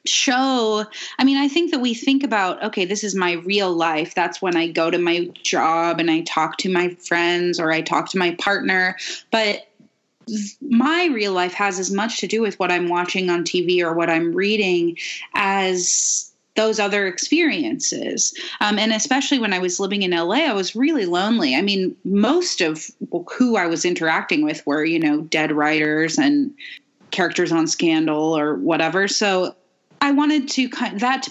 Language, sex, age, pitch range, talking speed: English, female, 30-49, 170-225 Hz, 185 wpm